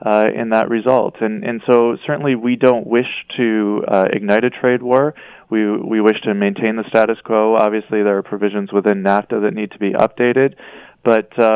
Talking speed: 190 wpm